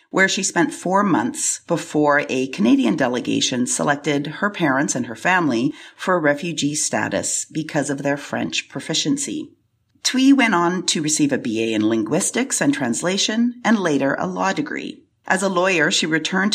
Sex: female